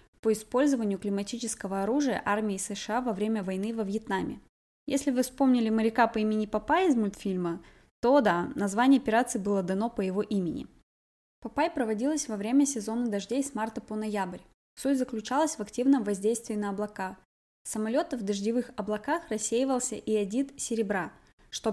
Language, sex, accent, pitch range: Russian, female, native, 210-250 Hz